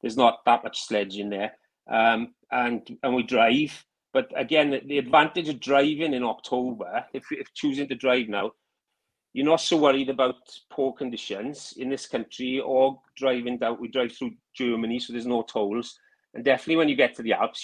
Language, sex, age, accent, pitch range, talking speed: English, male, 30-49, British, 115-135 Hz, 185 wpm